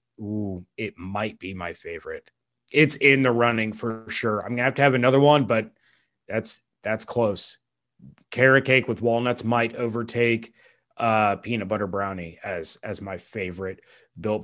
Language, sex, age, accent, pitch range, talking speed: English, male, 30-49, American, 120-140 Hz, 160 wpm